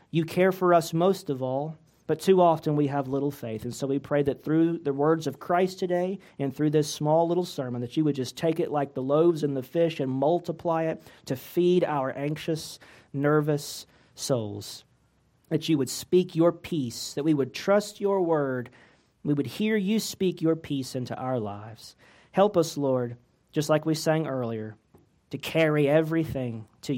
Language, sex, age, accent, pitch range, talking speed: English, male, 40-59, American, 115-155 Hz, 190 wpm